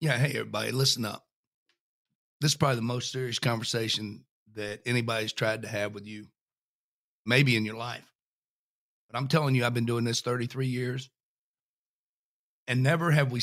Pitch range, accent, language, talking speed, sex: 120-150 Hz, American, English, 165 wpm, male